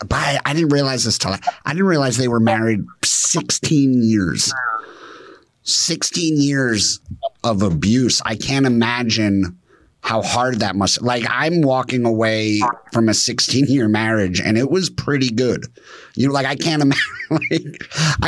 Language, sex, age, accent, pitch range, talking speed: English, male, 30-49, American, 100-130 Hz, 155 wpm